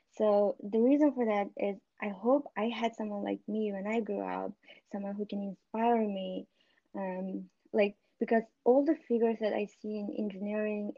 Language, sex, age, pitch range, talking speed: English, female, 20-39, 190-220 Hz, 180 wpm